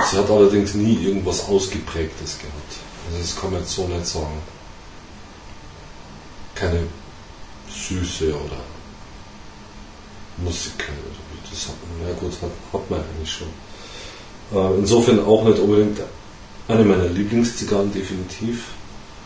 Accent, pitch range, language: German, 85-100 Hz, German